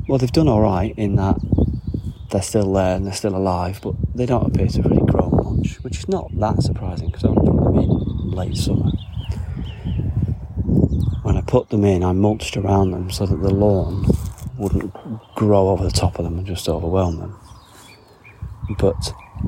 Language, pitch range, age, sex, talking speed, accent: English, 90-105 Hz, 30-49, male, 185 wpm, British